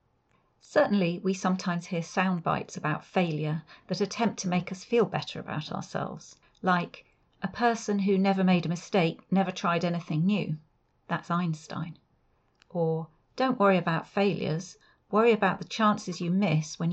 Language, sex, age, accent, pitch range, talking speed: English, female, 40-59, British, 165-205 Hz, 150 wpm